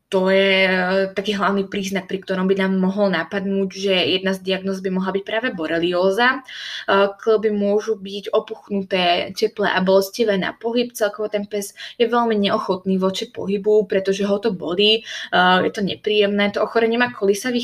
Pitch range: 195-220 Hz